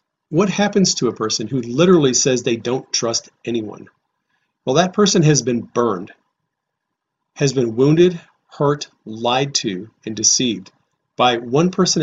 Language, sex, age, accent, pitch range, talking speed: English, male, 40-59, American, 120-160 Hz, 145 wpm